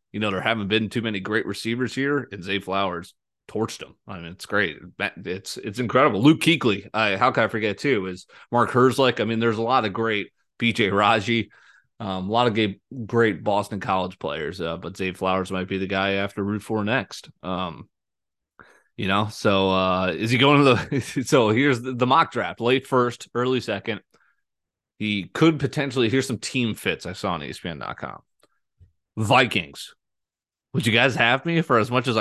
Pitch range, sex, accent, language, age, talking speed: 95-125 Hz, male, American, English, 30-49, 195 wpm